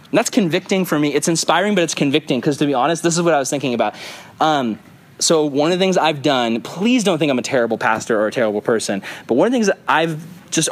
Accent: American